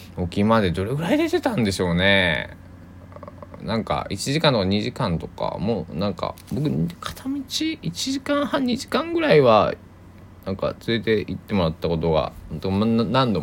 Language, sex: Japanese, male